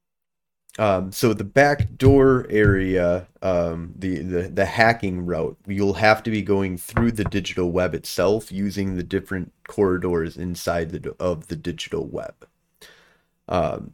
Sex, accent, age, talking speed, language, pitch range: male, American, 30-49, 140 wpm, English, 90-110 Hz